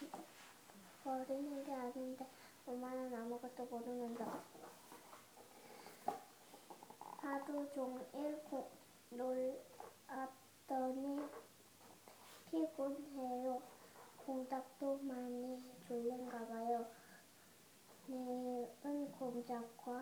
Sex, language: male, Korean